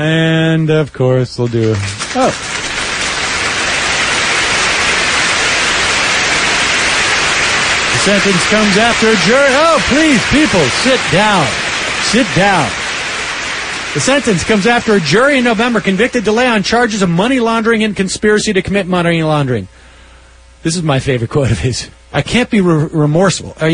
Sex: male